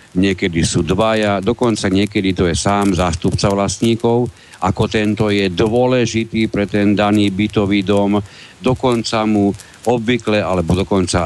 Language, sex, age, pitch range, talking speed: Slovak, male, 50-69, 95-115 Hz, 130 wpm